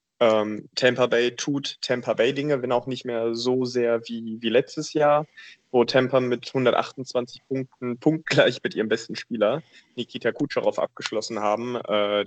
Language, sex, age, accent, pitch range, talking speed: German, male, 20-39, German, 110-130 Hz, 155 wpm